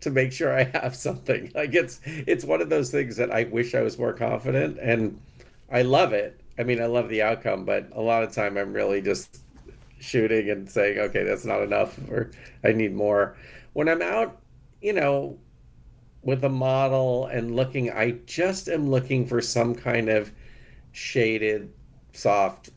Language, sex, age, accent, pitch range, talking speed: English, male, 40-59, American, 115-135 Hz, 185 wpm